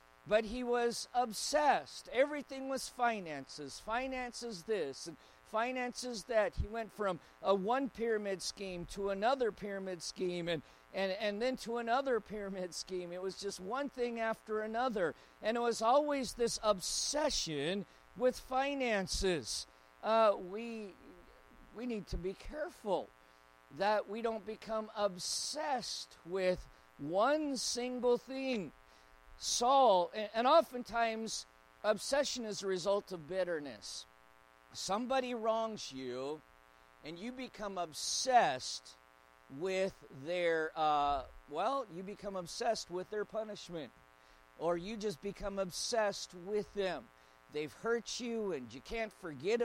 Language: English